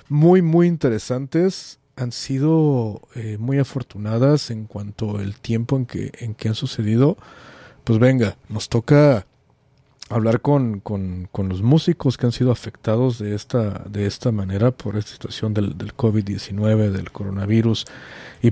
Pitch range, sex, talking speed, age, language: 110-135 Hz, male, 150 wpm, 40-59, English